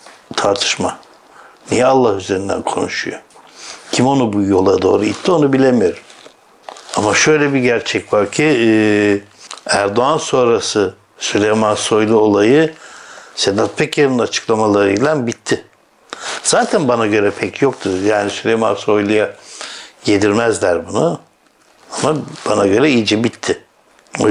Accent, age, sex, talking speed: native, 60-79, male, 110 wpm